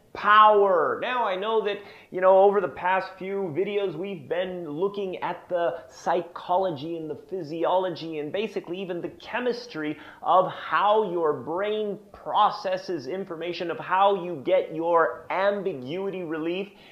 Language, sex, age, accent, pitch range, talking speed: English, male, 30-49, American, 175-225 Hz, 140 wpm